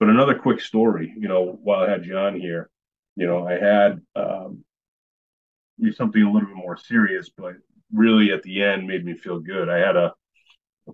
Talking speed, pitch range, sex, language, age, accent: 190 wpm, 85-100 Hz, male, English, 30-49, American